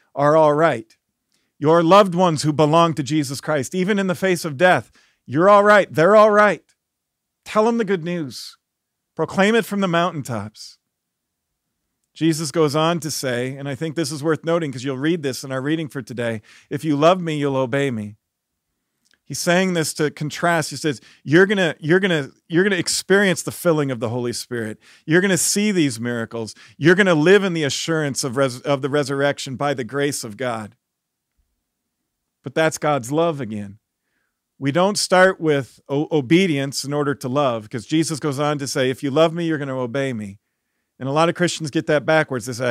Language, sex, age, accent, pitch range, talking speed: English, male, 40-59, American, 130-165 Hz, 200 wpm